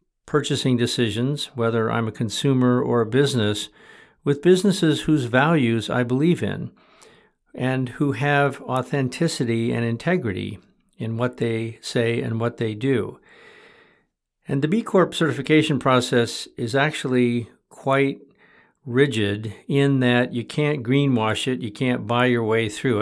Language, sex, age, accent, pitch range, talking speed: English, male, 50-69, American, 115-135 Hz, 135 wpm